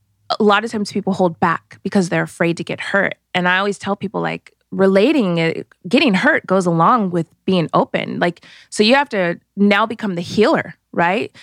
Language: English